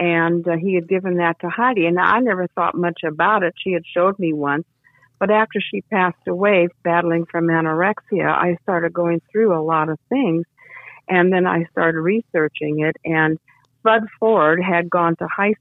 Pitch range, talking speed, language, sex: 160-185 Hz, 190 wpm, English, female